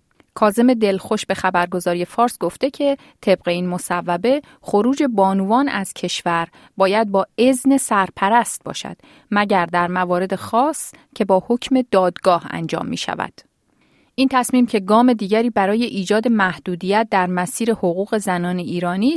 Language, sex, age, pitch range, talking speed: Persian, female, 30-49, 185-245 Hz, 135 wpm